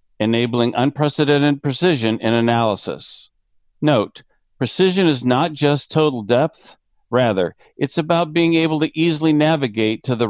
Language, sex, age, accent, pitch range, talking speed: English, male, 50-69, American, 110-145 Hz, 130 wpm